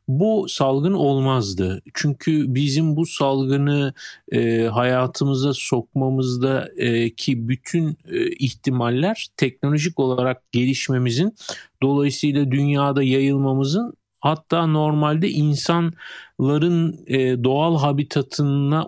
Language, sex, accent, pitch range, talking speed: Turkish, male, native, 130-160 Hz, 75 wpm